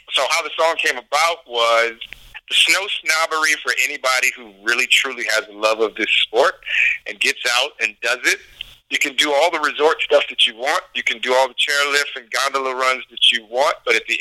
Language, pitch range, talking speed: English, 115-145 Hz, 220 wpm